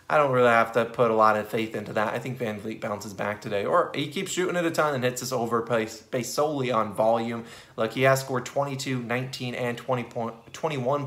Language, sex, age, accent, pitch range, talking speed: English, male, 20-39, American, 110-140 Hz, 230 wpm